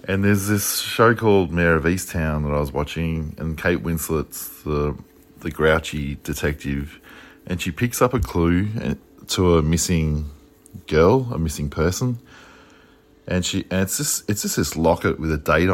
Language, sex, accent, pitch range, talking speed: English, male, Australian, 85-115 Hz, 170 wpm